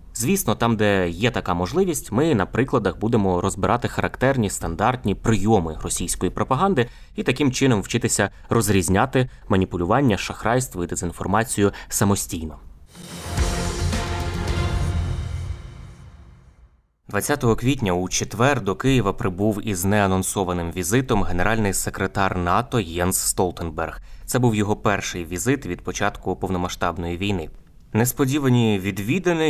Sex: male